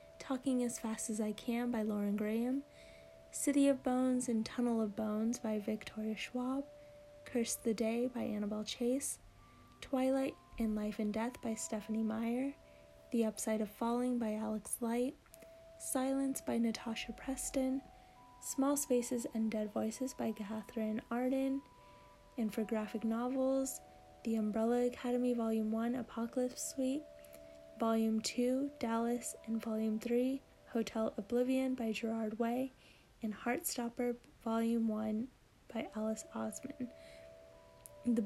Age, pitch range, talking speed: 10-29, 220-245 Hz, 125 wpm